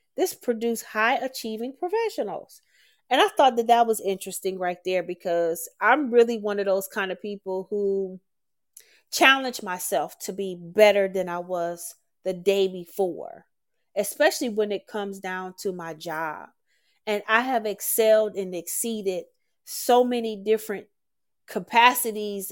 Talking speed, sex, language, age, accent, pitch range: 140 wpm, female, English, 30-49, American, 190-230 Hz